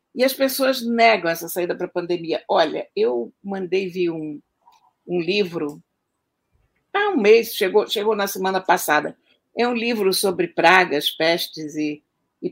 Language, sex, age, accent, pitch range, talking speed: Portuguese, female, 60-79, Brazilian, 175-265 Hz, 155 wpm